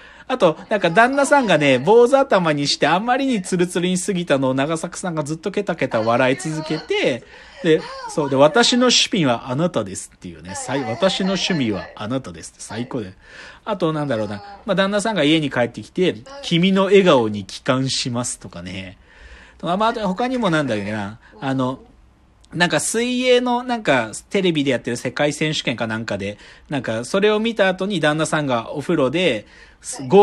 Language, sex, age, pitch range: Japanese, male, 40-59, 135-215 Hz